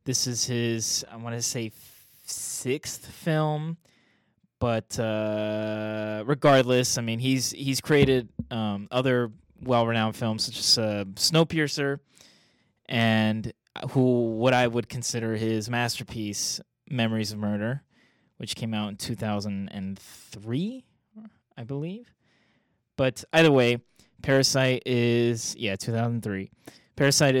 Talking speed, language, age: 125 wpm, English, 20-39